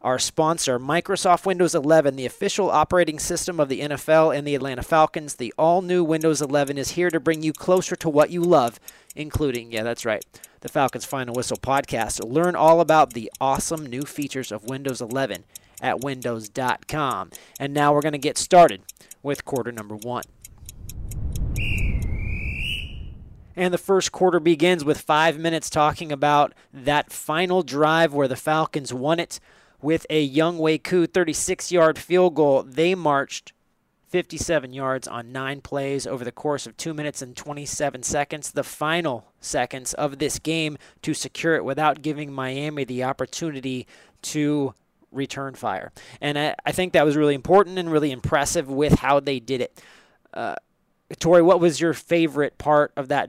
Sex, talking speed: male, 160 wpm